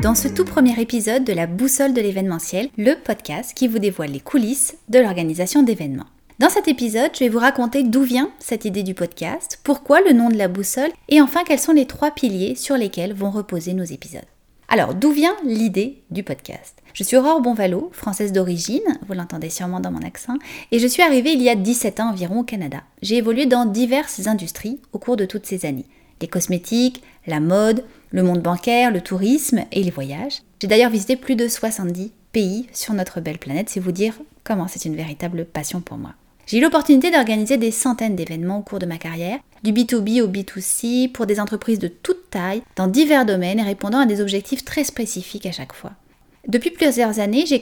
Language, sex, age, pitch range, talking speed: French, female, 30-49, 185-260 Hz, 210 wpm